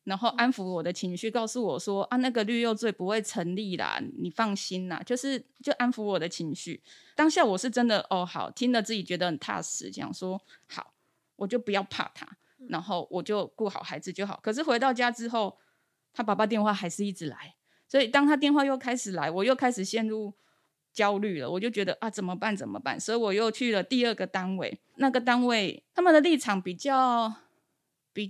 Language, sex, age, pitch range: Chinese, female, 20-39, 195-260 Hz